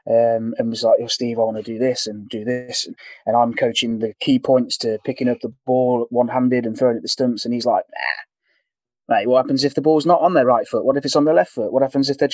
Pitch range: 120-135 Hz